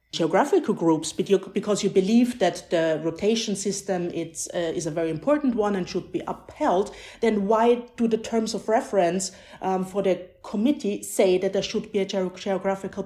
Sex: female